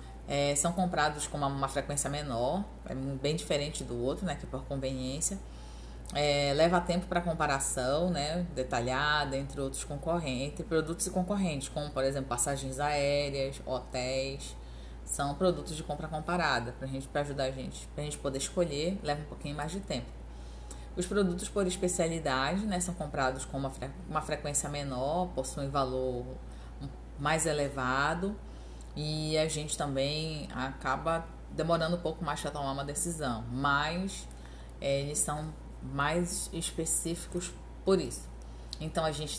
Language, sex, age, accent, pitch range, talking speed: Portuguese, female, 20-39, Brazilian, 135-165 Hz, 150 wpm